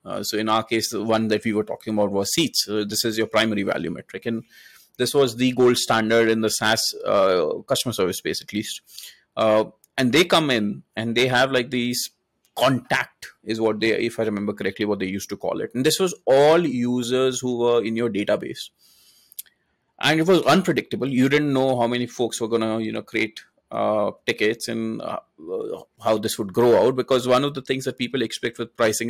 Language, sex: English, male